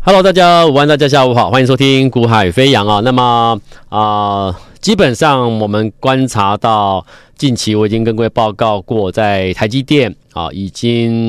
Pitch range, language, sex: 105-130 Hz, Chinese, male